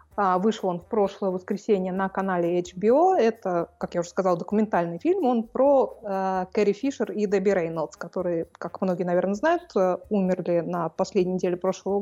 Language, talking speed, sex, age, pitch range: Russian, 170 wpm, female, 20-39, 185-225 Hz